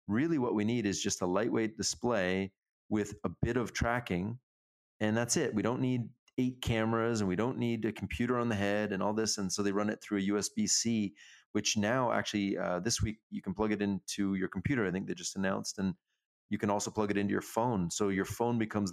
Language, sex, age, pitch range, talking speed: English, male, 30-49, 100-115 Hz, 230 wpm